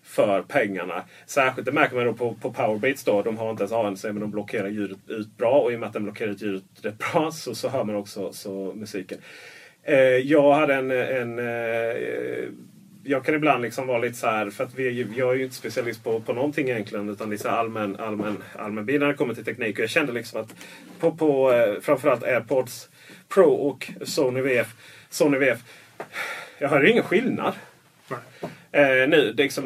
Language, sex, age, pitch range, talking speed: Swedish, male, 30-49, 110-145 Hz, 205 wpm